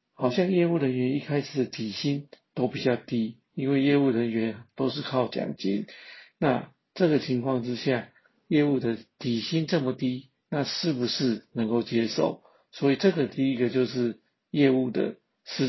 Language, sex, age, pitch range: Chinese, male, 50-69, 120-145 Hz